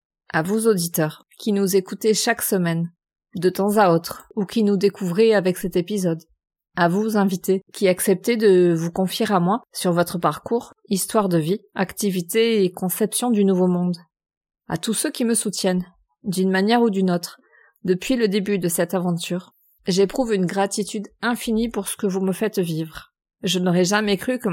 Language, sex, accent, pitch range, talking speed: French, female, French, 180-215 Hz, 180 wpm